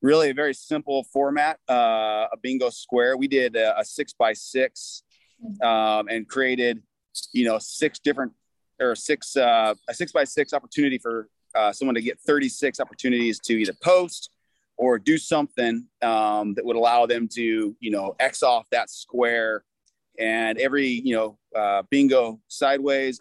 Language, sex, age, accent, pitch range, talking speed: English, male, 30-49, American, 110-130 Hz, 165 wpm